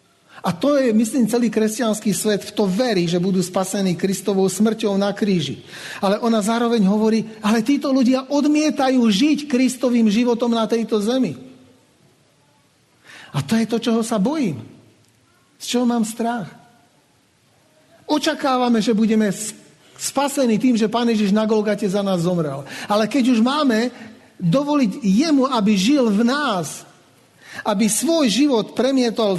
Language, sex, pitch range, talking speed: Slovak, male, 190-240 Hz, 140 wpm